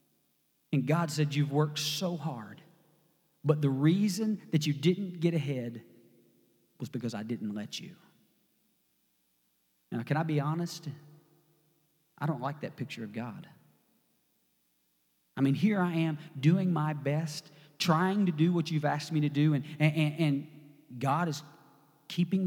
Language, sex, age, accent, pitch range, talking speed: English, male, 40-59, American, 145-180 Hz, 150 wpm